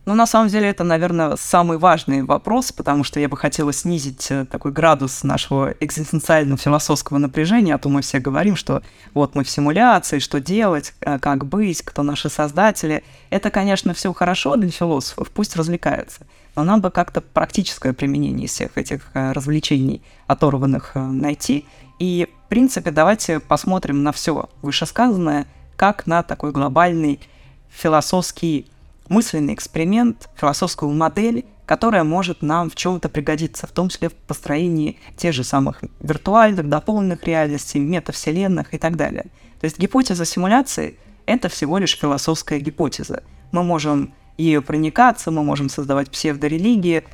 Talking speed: 145 wpm